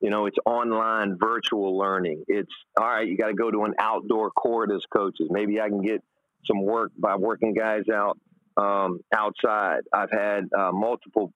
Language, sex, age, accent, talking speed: English, male, 40-59, American, 185 wpm